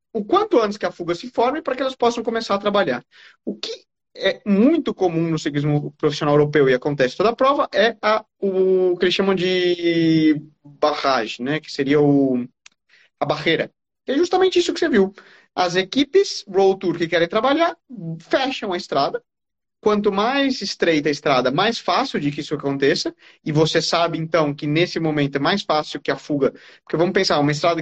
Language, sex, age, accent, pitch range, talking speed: Portuguese, male, 20-39, Brazilian, 165-245 Hz, 195 wpm